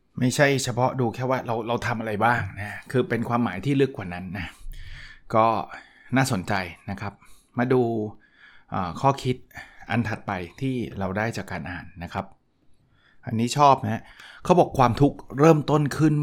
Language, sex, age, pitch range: Thai, male, 20-39, 100-125 Hz